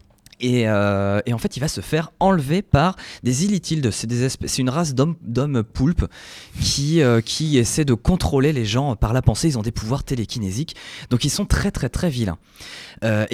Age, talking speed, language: 20-39, 185 wpm, French